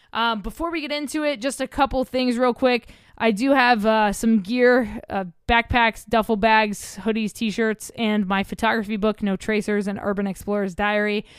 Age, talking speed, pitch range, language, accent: 20-39, 180 wpm, 210-245 Hz, English, American